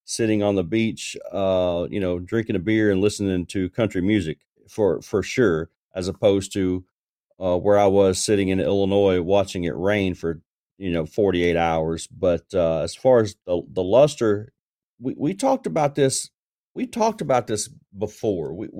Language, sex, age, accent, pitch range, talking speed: English, male, 40-59, American, 95-120 Hz, 180 wpm